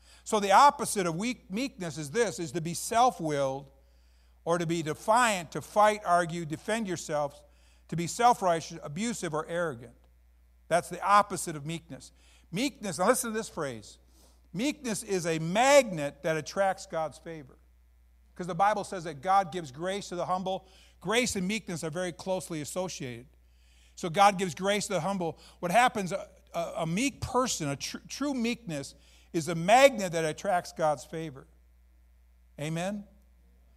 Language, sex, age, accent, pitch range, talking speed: English, male, 50-69, American, 135-190 Hz, 155 wpm